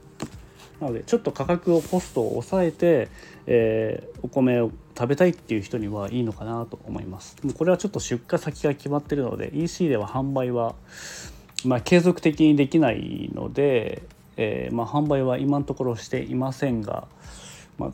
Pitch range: 110-145 Hz